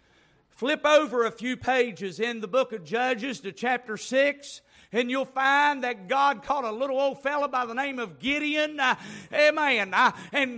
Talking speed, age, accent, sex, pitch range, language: 175 wpm, 50-69, American, male, 195-295 Hz, English